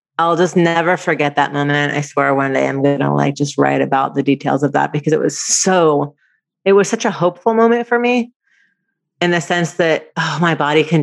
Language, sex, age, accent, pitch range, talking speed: English, female, 30-49, American, 145-175 Hz, 225 wpm